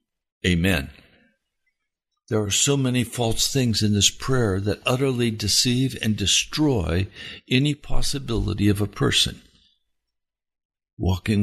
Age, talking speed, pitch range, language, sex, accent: 60-79, 110 wpm, 90-130 Hz, English, male, American